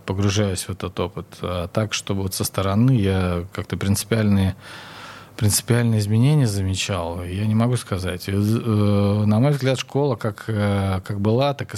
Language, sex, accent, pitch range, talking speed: Russian, male, native, 95-115 Hz, 150 wpm